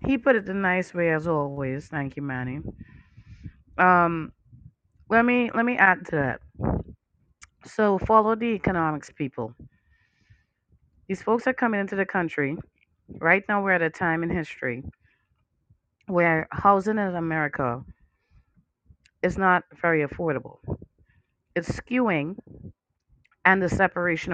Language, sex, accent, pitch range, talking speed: English, female, American, 160-225 Hz, 125 wpm